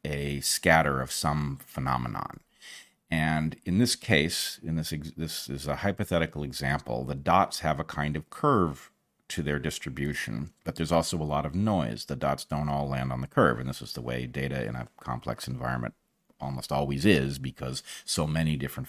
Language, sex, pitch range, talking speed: English, male, 70-80 Hz, 185 wpm